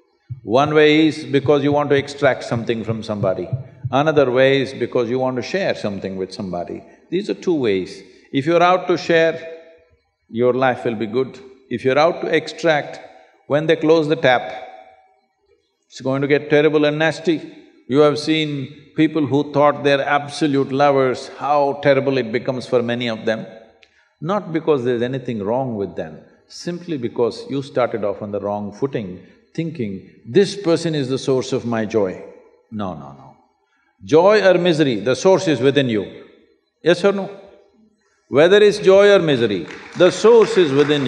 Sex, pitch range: male, 125-170 Hz